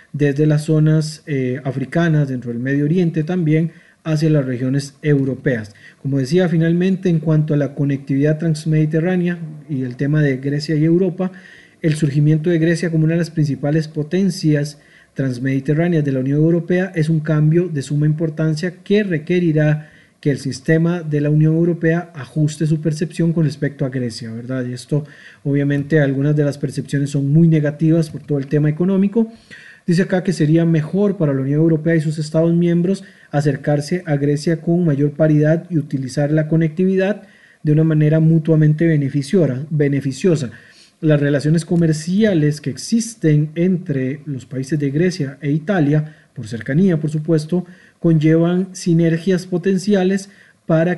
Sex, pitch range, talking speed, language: male, 145-170 Hz, 155 wpm, Spanish